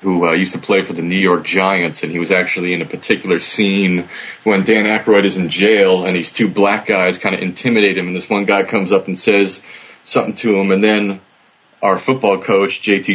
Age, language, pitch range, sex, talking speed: 30-49, English, 90-105 Hz, male, 230 wpm